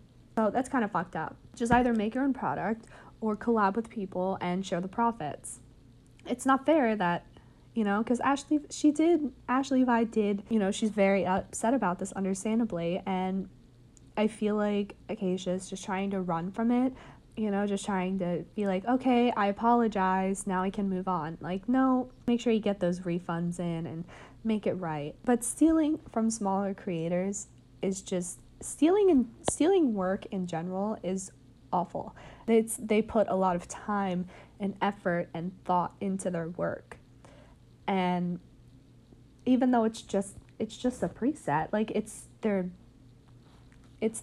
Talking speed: 165 wpm